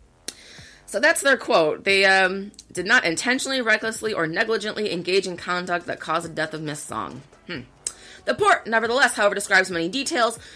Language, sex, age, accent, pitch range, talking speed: English, female, 30-49, American, 170-240 Hz, 170 wpm